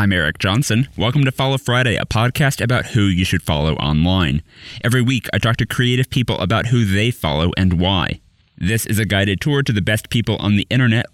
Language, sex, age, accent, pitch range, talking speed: English, male, 30-49, American, 95-125 Hz, 215 wpm